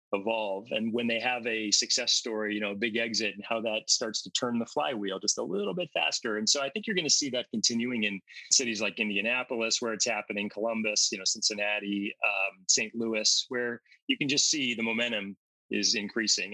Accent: American